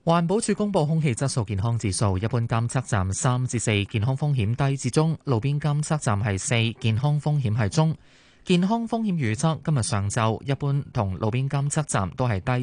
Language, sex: Chinese, male